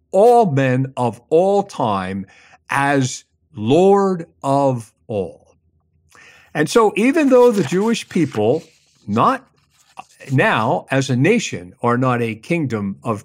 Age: 50-69